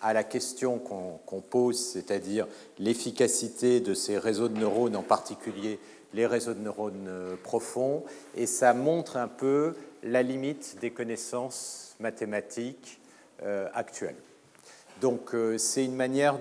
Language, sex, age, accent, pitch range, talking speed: French, male, 50-69, French, 110-130 Hz, 135 wpm